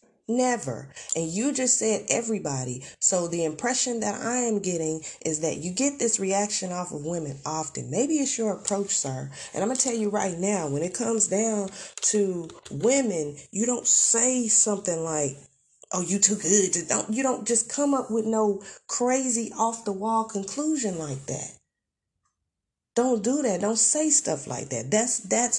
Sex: female